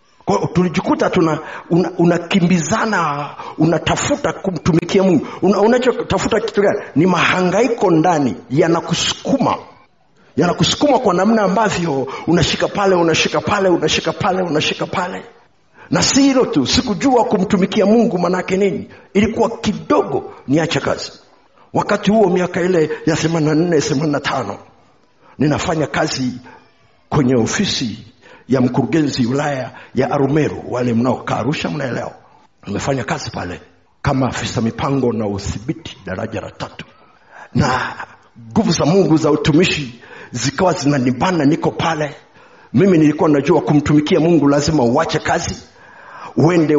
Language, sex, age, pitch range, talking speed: Swahili, male, 50-69, 145-195 Hz, 115 wpm